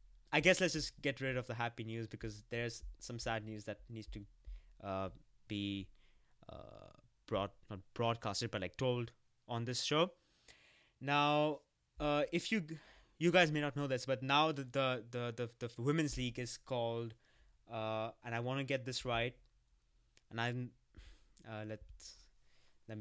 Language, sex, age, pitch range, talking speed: English, male, 20-39, 110-150 Hz, 165 wpm